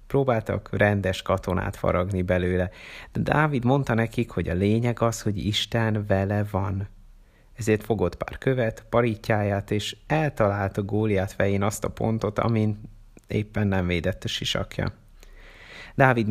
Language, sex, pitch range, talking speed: Hungarian, male, 95-115 Hz, 135 wpm